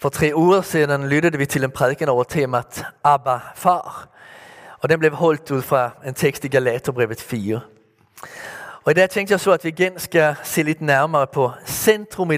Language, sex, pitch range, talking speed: Danish, male, 135-170 Hz, 195 wpm